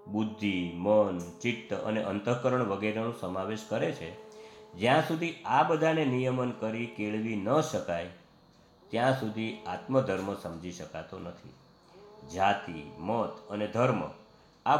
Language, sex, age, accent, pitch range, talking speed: Gujarati, male, 50-69, native, 105-135 Hz, 120 wpm